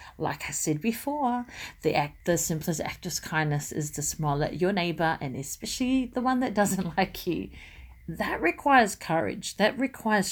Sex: female